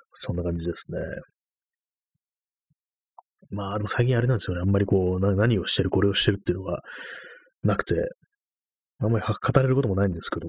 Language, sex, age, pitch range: Japanese, male, 30-49, 90-125 Hz